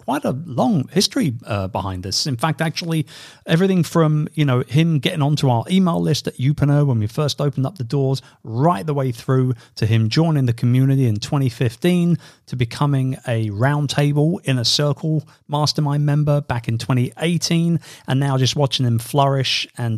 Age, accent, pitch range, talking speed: 40-59, British, 120-160 Hz, 175 wpm